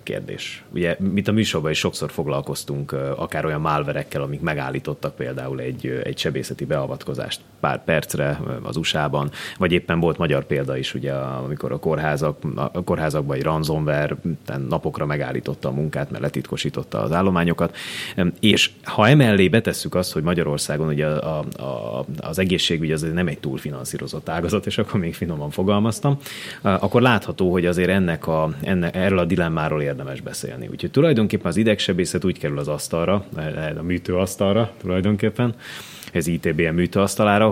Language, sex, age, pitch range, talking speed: Hungarian, male, 30-49, 75-90 Hz, 150 wpm